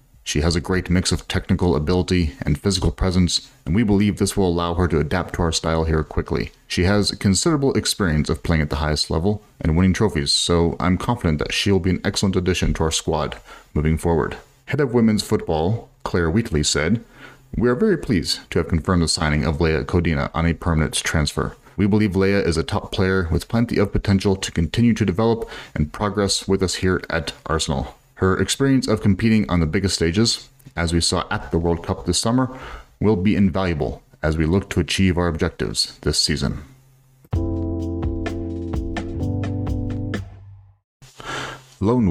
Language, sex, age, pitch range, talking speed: English, male, 30-49, 80-105 Hz, 180 wpm